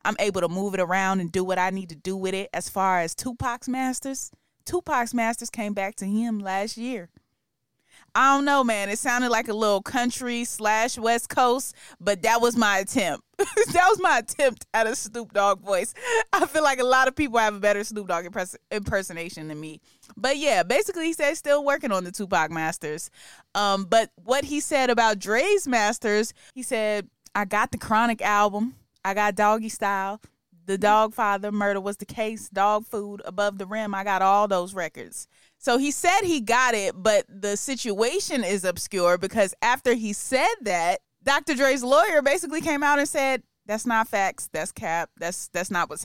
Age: 20-39